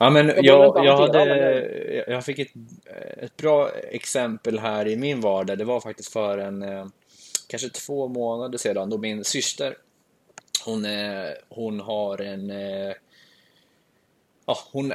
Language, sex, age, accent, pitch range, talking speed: English, male, 20-39, Swedish, 100-130 Hz, 110 wpm